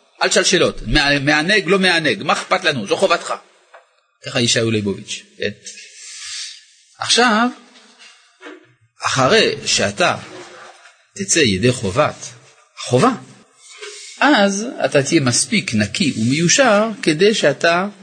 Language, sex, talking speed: Hebrew, male, 100 wpm